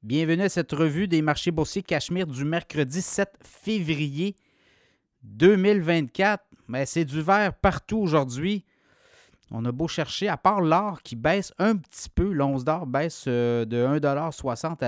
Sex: male